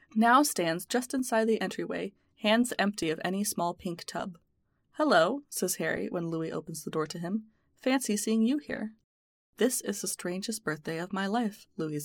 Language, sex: English, female